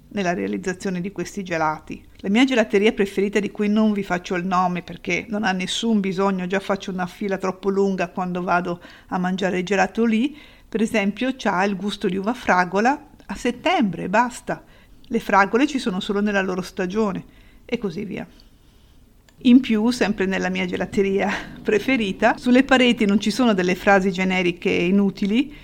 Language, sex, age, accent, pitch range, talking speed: Italian, female, 50-69, native, 185-220 Hz, 170 wpm